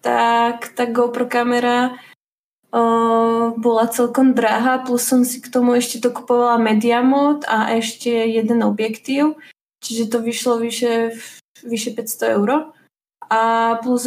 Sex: female